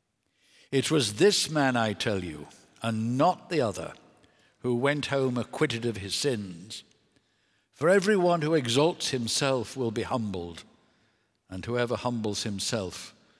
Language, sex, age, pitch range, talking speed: English, male, 60-79, 110-160 Hz, 135 wpm